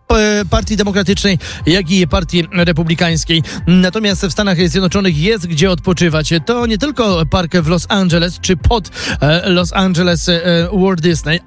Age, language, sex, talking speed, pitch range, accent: 30-49, Polish, male, 135 wpm, 175-215 Hz, native